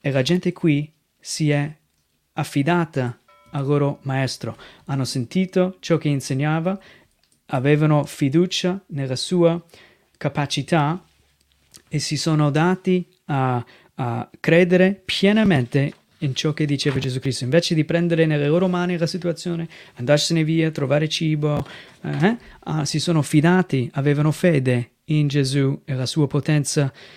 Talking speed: 130 wpm